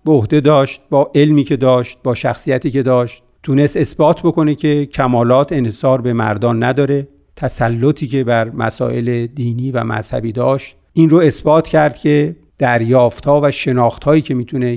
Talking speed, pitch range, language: 150 wpm, 120-150 Hz, Persian